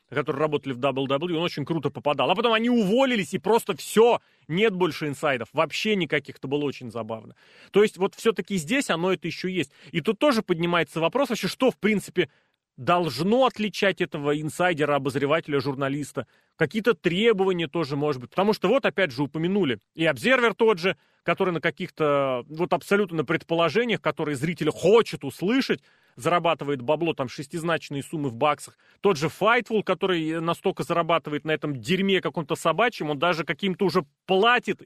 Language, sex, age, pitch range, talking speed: Russian, male, 30-49, 150-195 Hz, 165 wpm